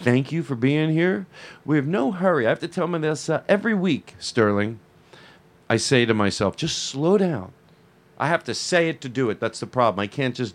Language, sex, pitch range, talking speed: English, male, 105-160 Hz, 220 wpm